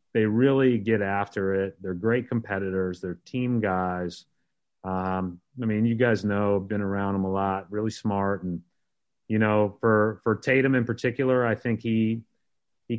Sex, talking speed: male, 165 wpm